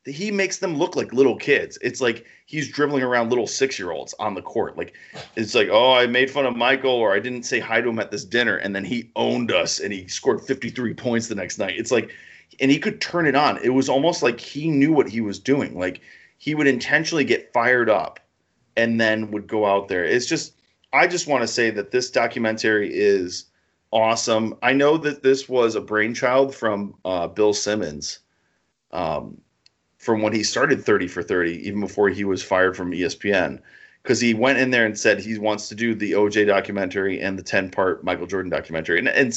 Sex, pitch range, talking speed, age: male, 105-135 Hz, 220 wpm, 30-49